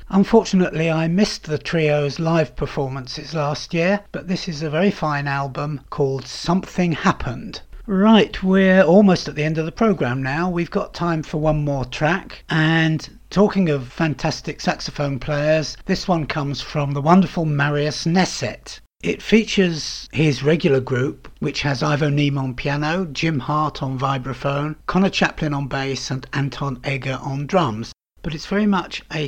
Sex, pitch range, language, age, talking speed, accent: male, 140-180 Hz, English, 60-79, 160 wpm, British